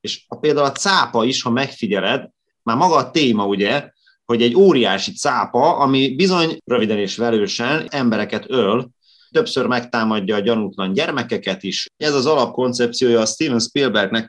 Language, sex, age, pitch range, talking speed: Hungarian, male, 30-49, 115-140 Hz, 150 wpm